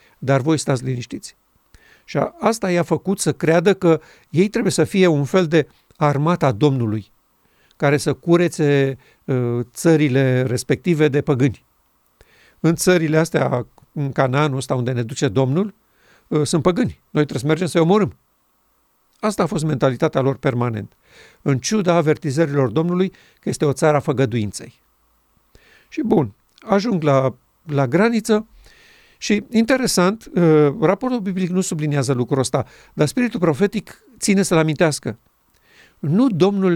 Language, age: Romanian, 50-69